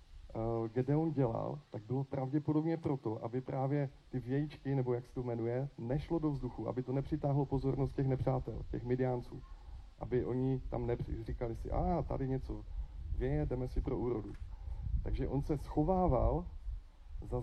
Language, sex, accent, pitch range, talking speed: Czech, male, native, 115-145 Hz, 155 wpm